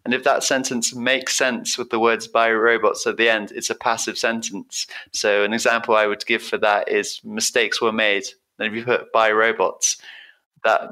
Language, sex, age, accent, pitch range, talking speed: English, male, 20-39, British, 105-125 Hz, 205 wpm